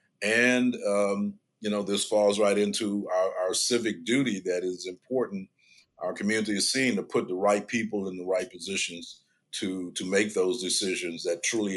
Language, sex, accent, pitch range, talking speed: English, male, American, 90-120 Hz, 180 wpm